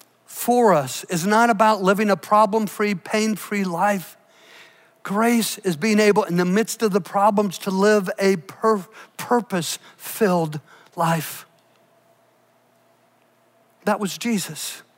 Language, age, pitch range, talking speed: English, 50-69, 210-270 Hz, 110 wpm